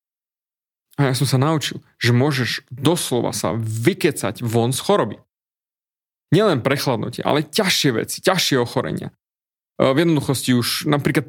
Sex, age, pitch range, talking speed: male, 30-49, 125-160 Hz, 130 wpm